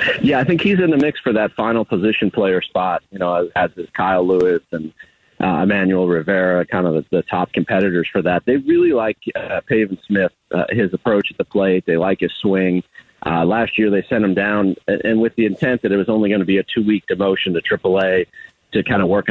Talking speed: 235 wpm